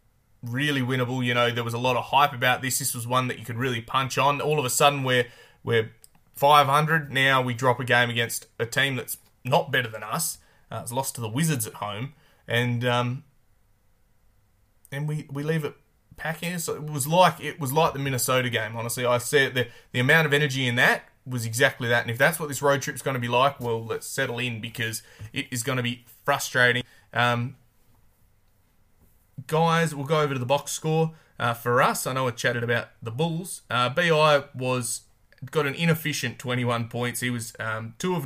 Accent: Australian